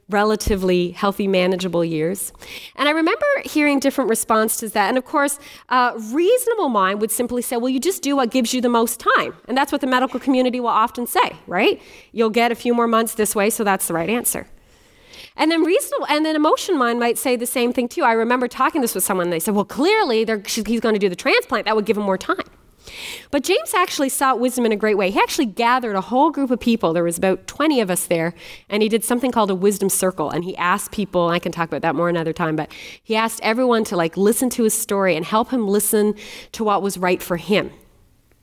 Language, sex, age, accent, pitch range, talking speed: English, female, 30-49, American, 190-255 Hz, 245 wpm